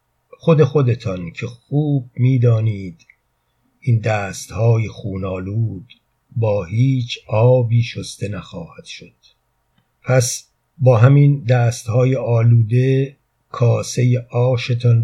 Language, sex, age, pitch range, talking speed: Persian, male, 50-69, 110-125 Hz, 90 wpm